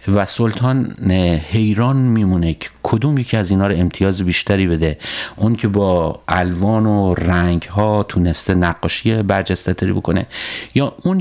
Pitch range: 90-120 Hz